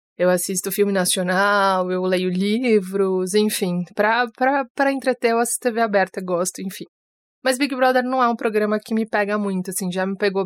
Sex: female